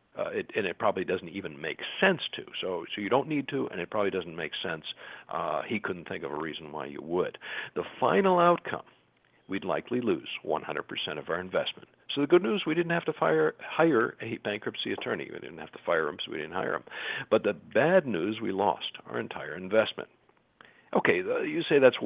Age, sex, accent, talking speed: 50-69, male, American, 220 wpm